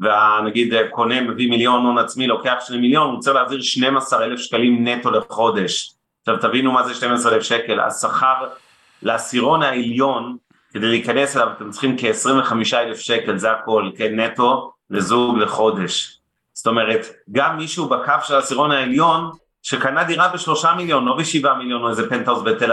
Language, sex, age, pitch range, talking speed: Hebrew, male, 30-49, 115-135 Hz, 150 wpm